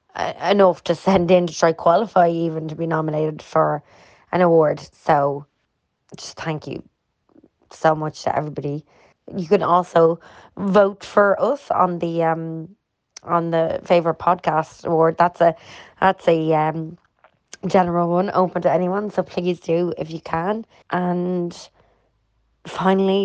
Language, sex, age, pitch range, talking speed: English, female, 20-39, 165-190 Hz, 140 wpm